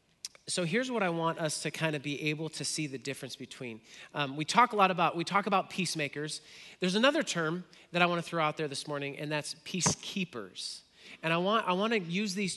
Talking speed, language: 235 wpm, English